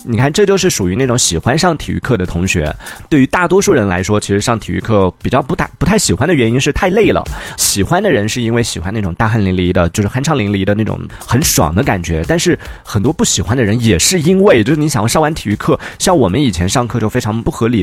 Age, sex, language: 30-49, male, Chinese